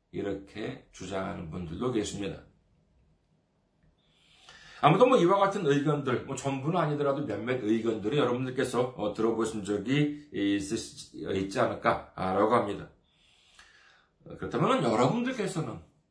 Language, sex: Korean, male